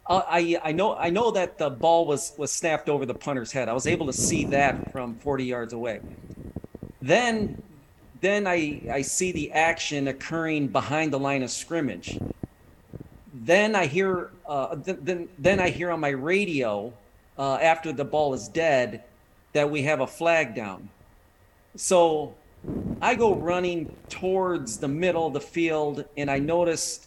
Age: 40-59